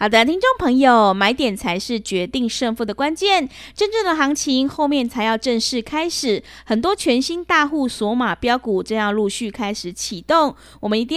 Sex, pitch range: female, 220-315 Hz